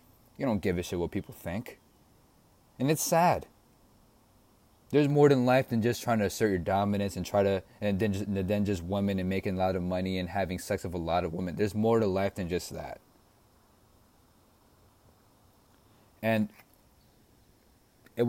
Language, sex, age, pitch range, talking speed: English, male, 20-39, 95-110 Hz, 175 wpm